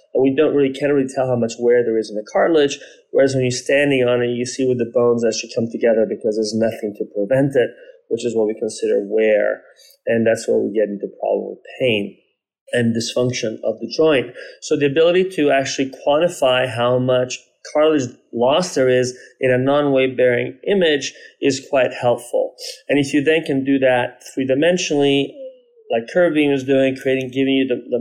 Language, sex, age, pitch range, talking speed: English, male, 30-49, 120-150 Hz, 200 wpm